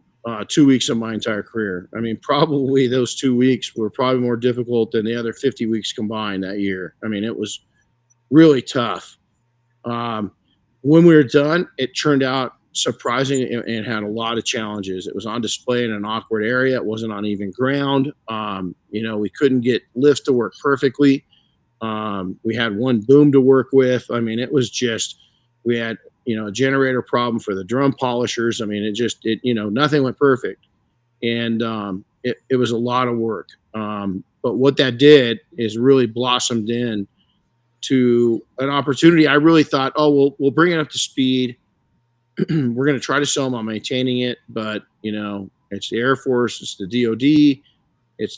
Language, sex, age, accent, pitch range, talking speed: English, male, 50-69, American, 110-135 Hz, 195 wpm